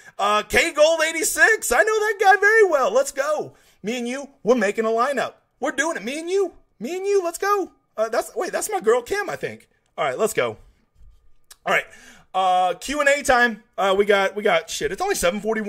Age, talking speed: 30-49, 230 wpm